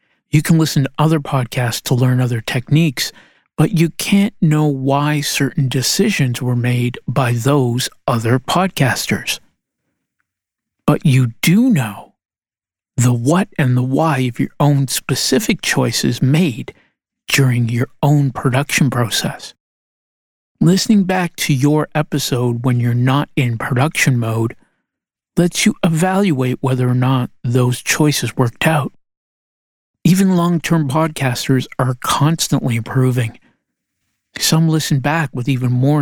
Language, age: English, 50-69